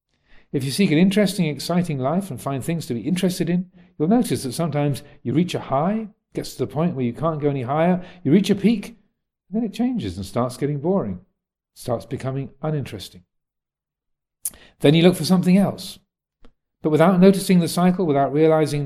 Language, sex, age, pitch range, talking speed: English, male, 40-59, 125-170 Hz, 190 wpm